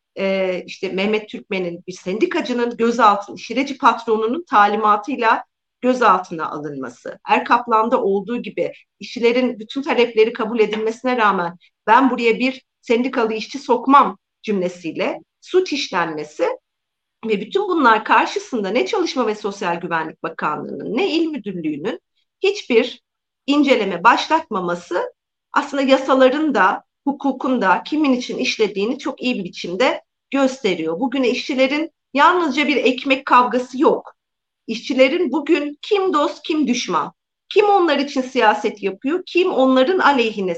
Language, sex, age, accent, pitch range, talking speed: Turkish, female, 50-69, native, 220-290 Hz, 115 wpm